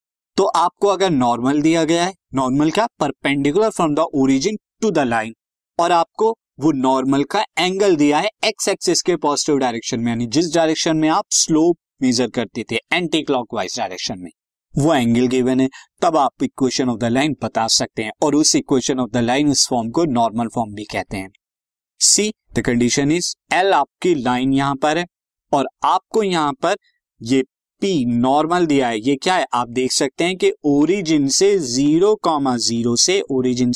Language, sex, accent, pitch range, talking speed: Hindi, male, native, 125-175 Hz, 155 wpm